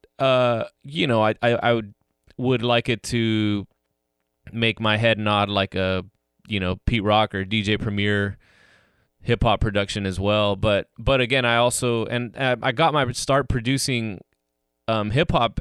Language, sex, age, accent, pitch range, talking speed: English, male, 20-39, American, 105-120 Hz, 165 wpm